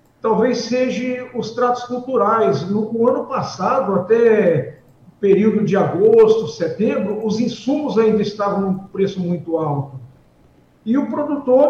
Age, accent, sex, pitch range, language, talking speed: 50-69, Brazilian, male, 195-255 Hz, Portuguese, 130 wpm